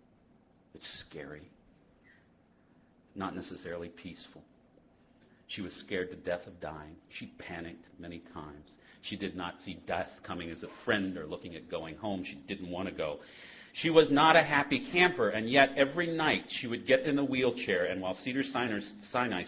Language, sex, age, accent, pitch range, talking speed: English, male, 50-69, American, 100-145 Hz, 170 wpm